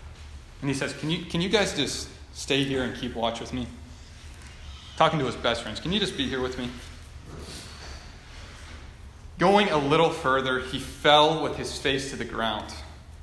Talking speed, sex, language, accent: 180 wpm, male, English, American